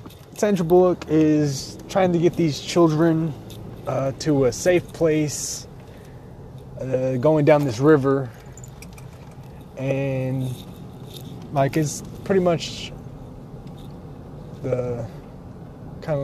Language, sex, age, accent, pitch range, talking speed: English, male, 20-39, American, 125-155 Hz, 90 wpm